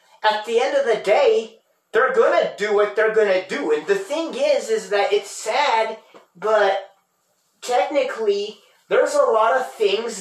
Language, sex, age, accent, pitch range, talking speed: English, male, 30-49, American, 195-250 Hz, 175 wpm